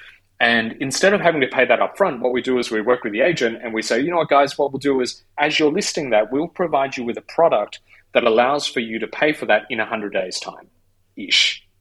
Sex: male